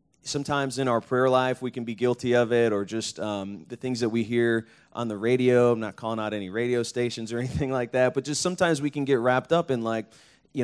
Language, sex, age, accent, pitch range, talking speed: English, male, 30-49, American, 110-130 Hz, 250 wpm